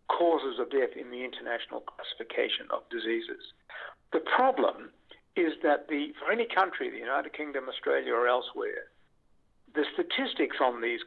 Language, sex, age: English, male, 60-79